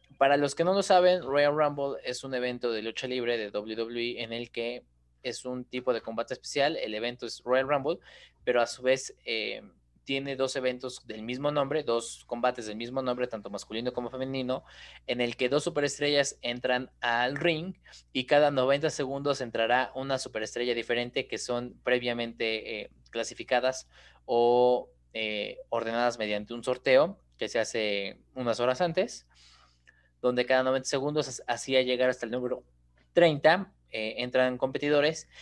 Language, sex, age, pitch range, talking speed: Spanish, male, 20-39, 115-135 Hz, 165 wpm